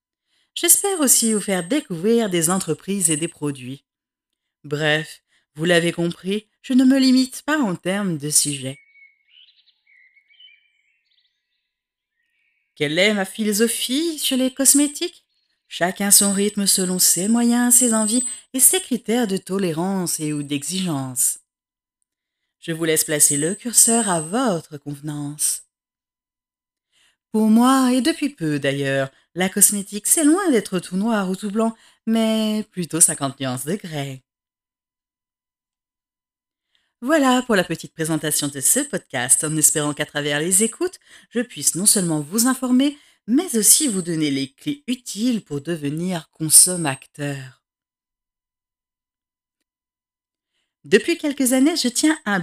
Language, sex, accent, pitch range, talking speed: French, female, French, 155-250 Hz, 130 wpm